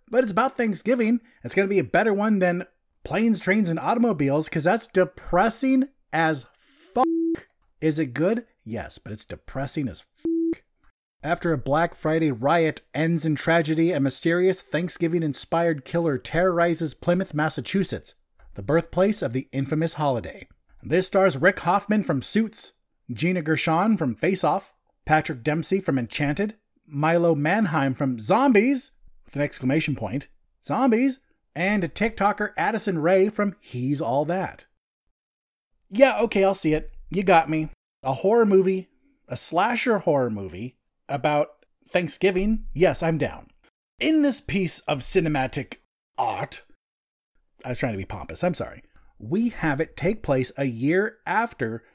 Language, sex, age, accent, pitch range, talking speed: English, male, 30-49, American, 140-200 Hz, 145 wpm